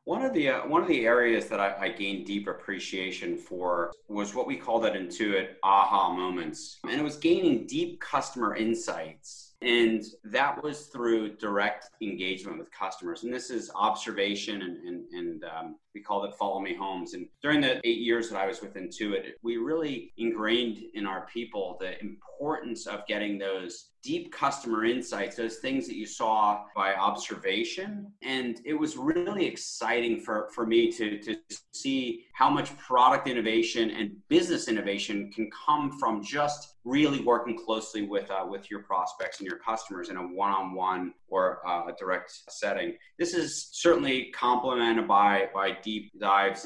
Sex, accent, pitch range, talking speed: male, American, 100-145 Hz, 170 wpm